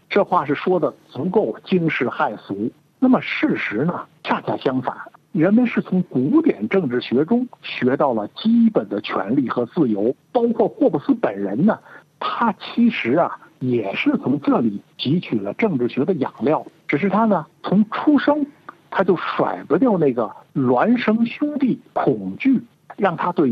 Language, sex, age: Chinese, male, 60-79